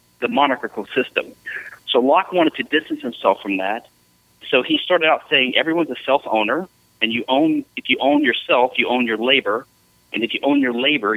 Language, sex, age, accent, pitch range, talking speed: English, male, 40-59, American, 105-145 Hz, 195 wpm